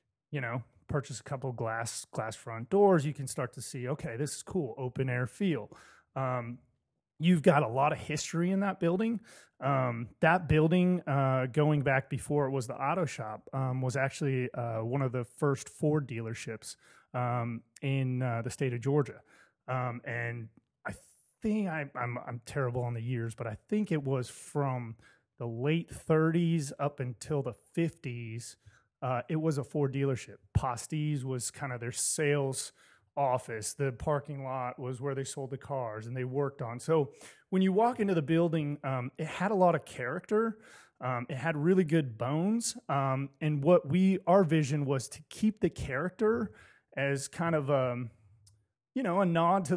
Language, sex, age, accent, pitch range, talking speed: English, male, 30-49, American, 125-160 Hz, 180 wpm